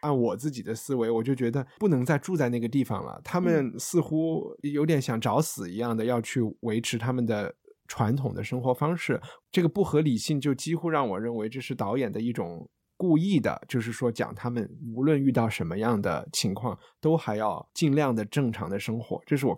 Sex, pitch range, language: male, 115-145 Hz, Chinese